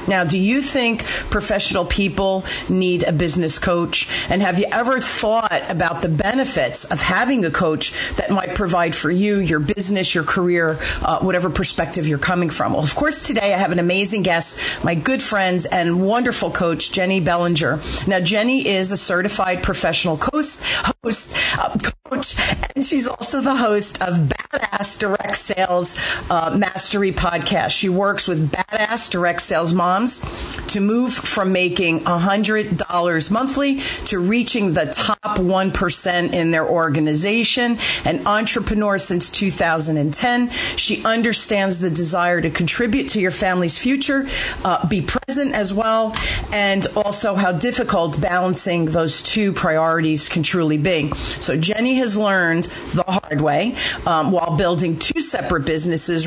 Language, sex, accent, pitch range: English, female, American, 175-215 Hz